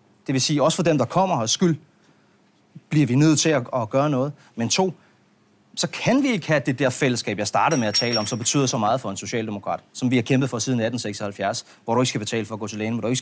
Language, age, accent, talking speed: Danish, 30-49, native, 275 wpm